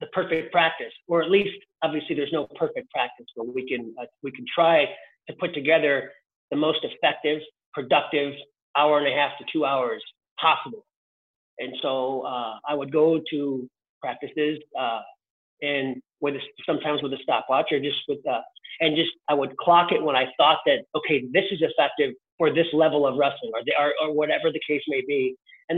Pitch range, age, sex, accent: 150-205 Hz, 40-59, male, American